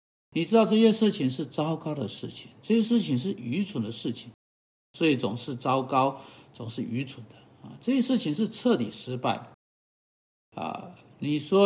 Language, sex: Chinese, male